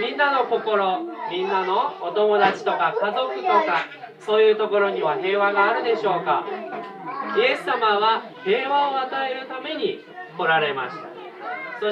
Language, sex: Japanese, male